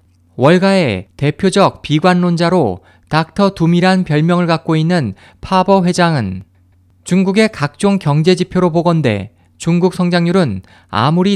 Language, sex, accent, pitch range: Korean, male, native, 115-185 Hz